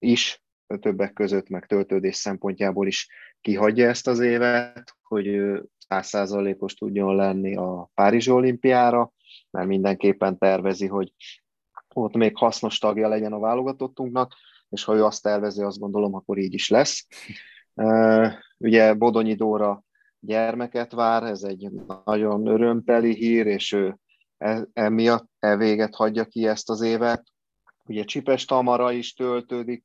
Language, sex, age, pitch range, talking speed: Hungarian, male, 30-49, 100-115 Hz, 130 wpm